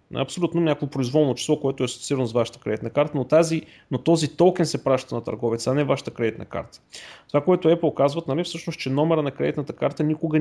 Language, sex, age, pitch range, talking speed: Bulgarian, male, 30-49, 125-160 Hz, 215 wpm